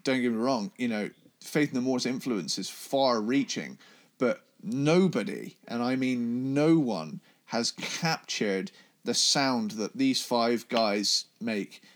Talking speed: 145 wpm